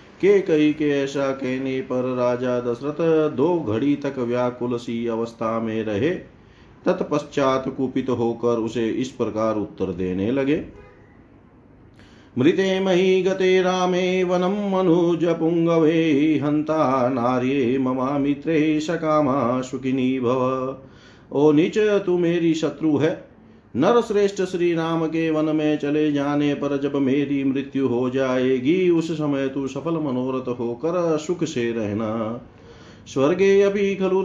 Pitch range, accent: 125-160 Hz, native